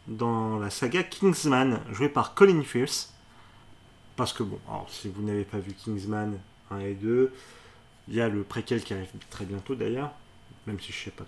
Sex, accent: male, French